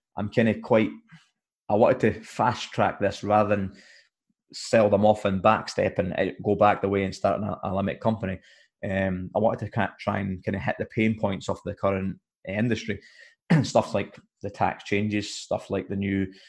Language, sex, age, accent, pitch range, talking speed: English, male, 20-39, British, 95-105 Hz, 190 wpm